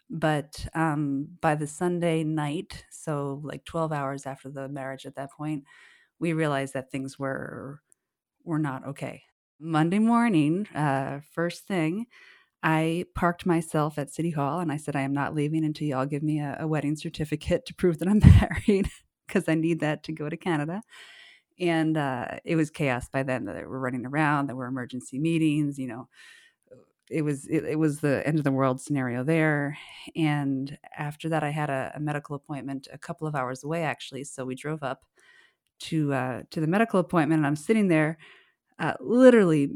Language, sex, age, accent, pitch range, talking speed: English, female, 30-49, American, 140-170 Hz, 185 wpm